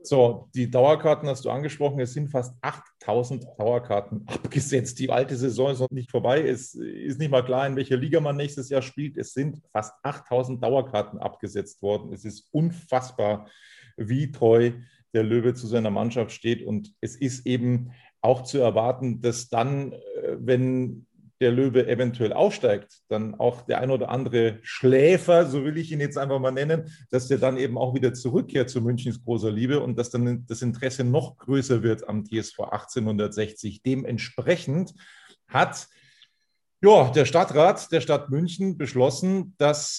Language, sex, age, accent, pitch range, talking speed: German, male, 40-59, German, 115-145 Hz, 165 wpm